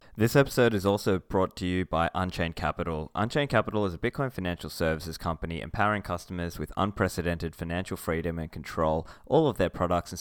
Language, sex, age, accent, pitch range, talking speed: English, male, 20-39, Australian, 80-100 Hz, 180 wpm